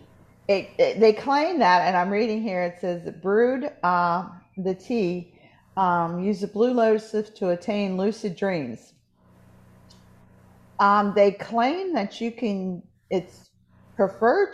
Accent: American